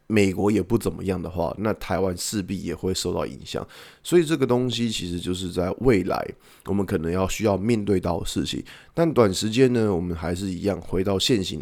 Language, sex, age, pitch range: Chinese, male, 20-39, 90-115 Hz